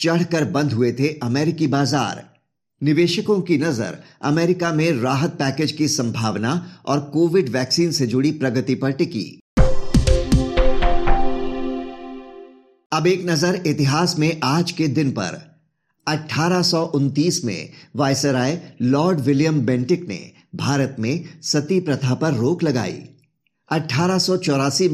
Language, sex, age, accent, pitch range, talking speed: Hindi, male, 50-69, native, 130-165 Hz, 115 wpm